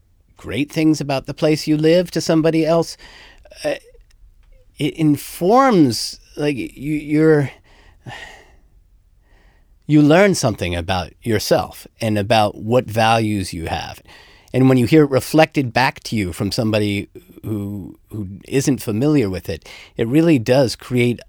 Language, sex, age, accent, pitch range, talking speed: English, male, 50-69, American, 100-135 Hz, 135 wpm